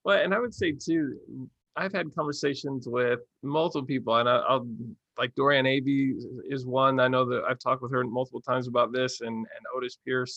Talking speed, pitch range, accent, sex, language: 195 wpm, 120-140 Hz, American, male, English